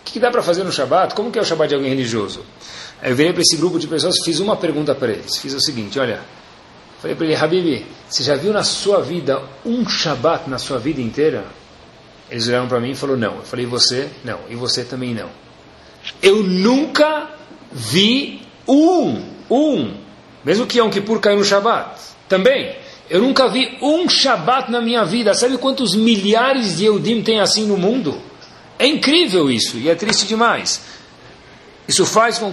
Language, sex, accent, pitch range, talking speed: Portuguese, male, Brazilian, 135-215 Hz, 190 wpm